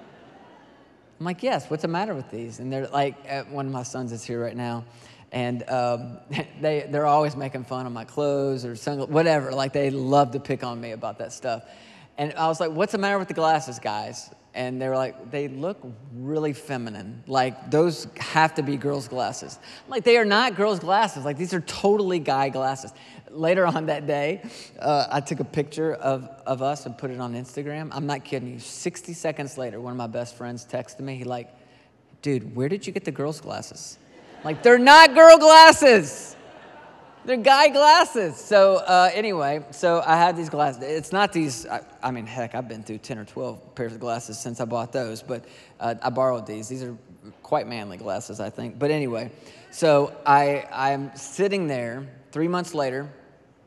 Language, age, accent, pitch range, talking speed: English, 30-49, American, 120-155 Hz, 200 wpm